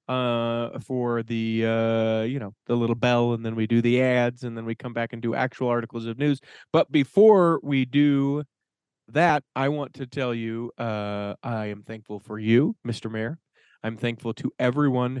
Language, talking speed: English, 190 wpm